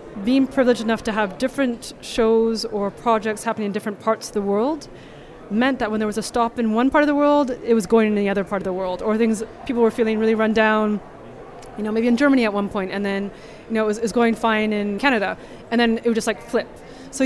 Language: English